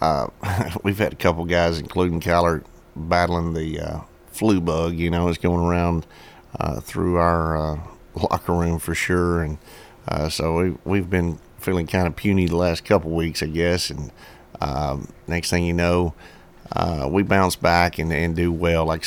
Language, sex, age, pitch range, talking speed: English, male, 50-69, 80-90 Hz, 175 wpm